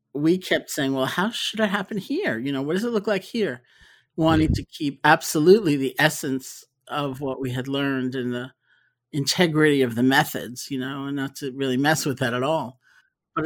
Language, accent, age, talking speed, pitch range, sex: English, American, 50-69, 205 wpm, 130-155 Hz, male